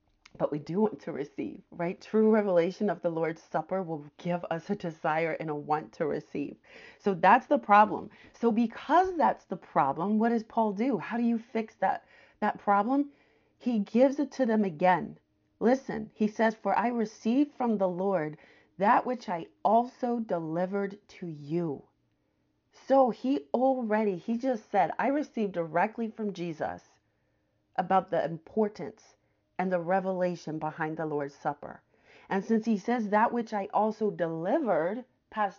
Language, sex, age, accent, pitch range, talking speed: English, female, 30-49, American, 170-225 Hz, 160 wpm